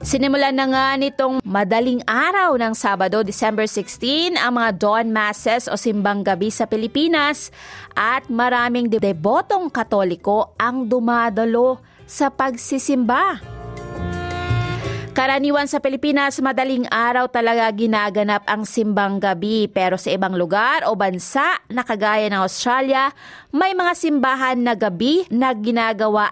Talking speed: 125 wpm